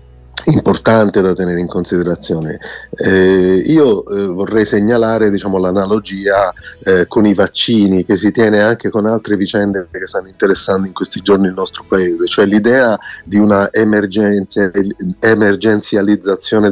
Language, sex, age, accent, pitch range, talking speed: Italian, male, 30-49, native, 90-105 Hz, 140 wpm